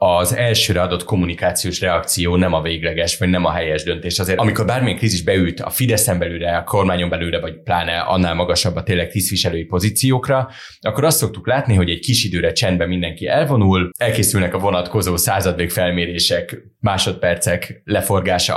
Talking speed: 160 wpm